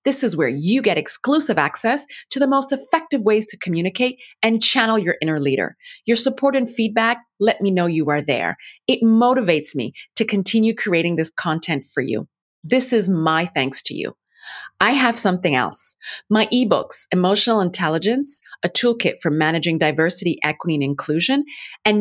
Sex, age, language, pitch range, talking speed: female, 30-49, English, 170-260 Hz, 170 wpm